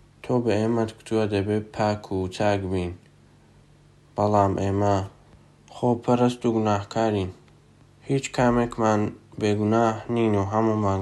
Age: 20-39